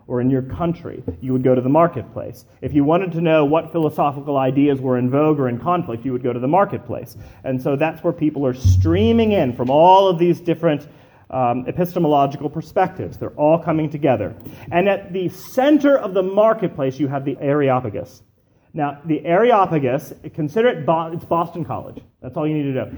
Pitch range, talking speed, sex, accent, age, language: 130-175 Hz, 200 wpm, male, American, 30-49, English